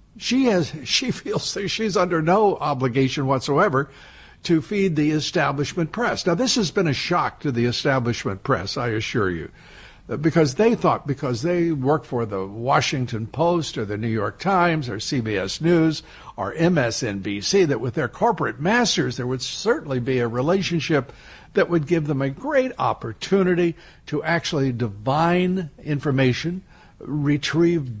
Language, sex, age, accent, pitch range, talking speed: English, male, 60-79, American, 125-170 Hz, 150 wpm